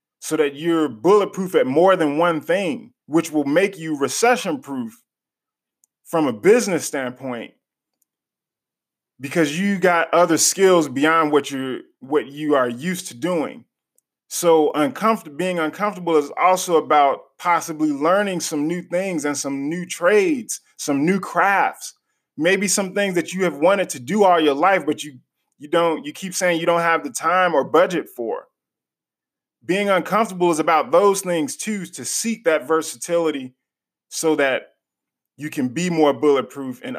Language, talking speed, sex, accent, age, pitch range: English, 155 wpm, male, American, 20-39, 145-185 Hz